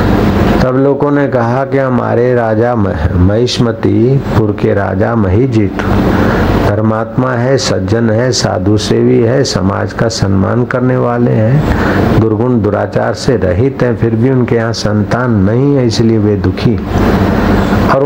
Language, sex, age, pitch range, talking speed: Hindi, male, 60-79, 100-115 Hz, 130 wpm